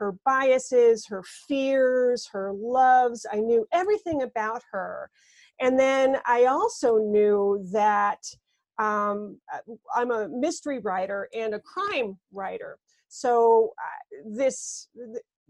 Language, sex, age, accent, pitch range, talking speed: English, female, 40-59, American, 215-270 Hz, 115 wpm